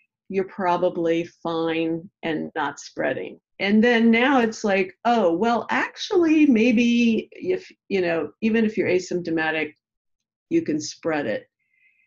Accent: American